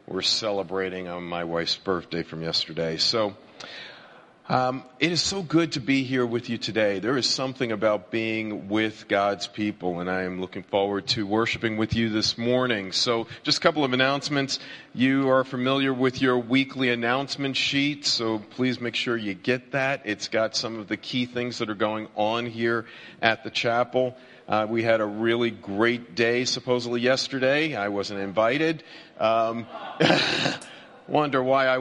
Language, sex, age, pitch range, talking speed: English, male, 50-69, 105-130 Hz, 175 wpm